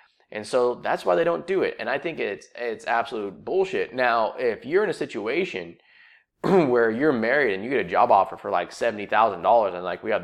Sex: male